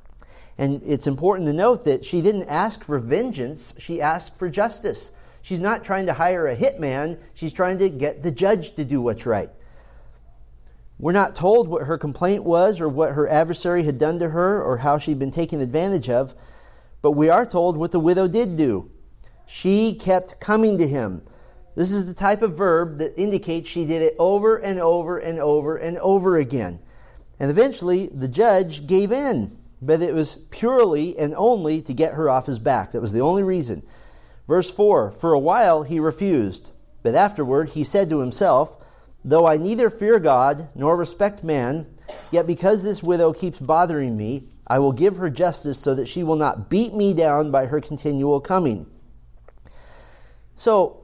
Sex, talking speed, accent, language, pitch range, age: male, 185 wpm, American, English, 145-190 Hz, 40-59